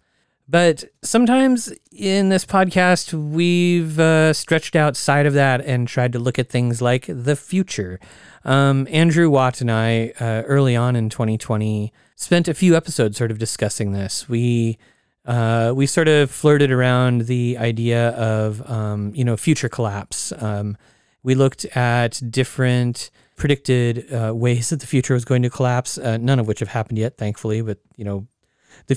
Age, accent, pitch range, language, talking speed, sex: 30-49, American, 115-145 Hz, English, 165 wpm, male